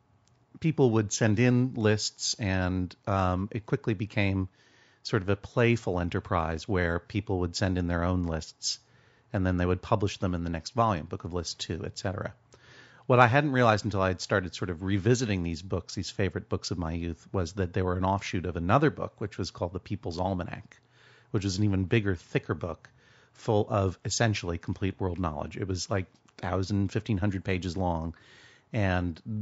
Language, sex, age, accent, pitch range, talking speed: English, male, 40-59, American, 95-120 Hz, 190 wpm